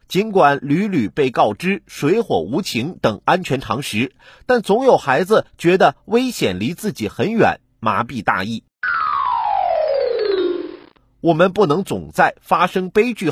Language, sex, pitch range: Chinese, male, 170-240 Hz